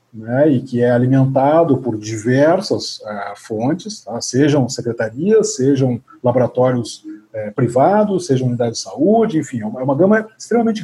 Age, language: 40-59, Portuguese